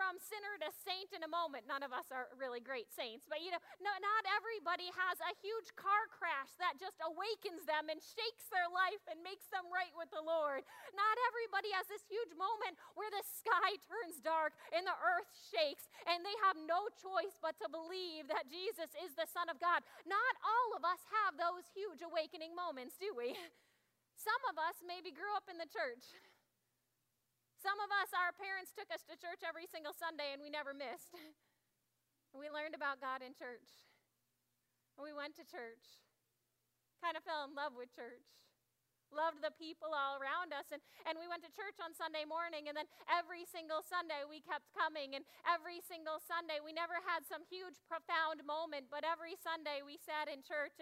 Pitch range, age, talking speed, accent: 300-370 Hz, 30-49, 195 wpm, American